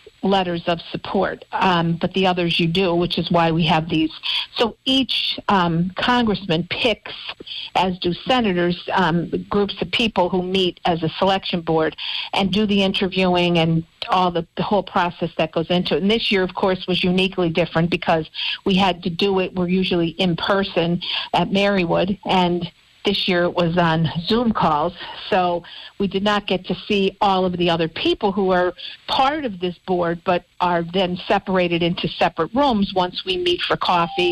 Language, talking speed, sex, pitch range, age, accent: English, 185 wpm, female, 175-200 Hz, 50-69, American